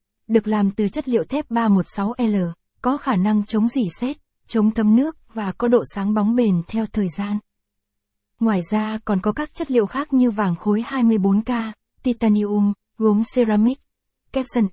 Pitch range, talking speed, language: 205-245 Hz, 165 wpm, Vietnamese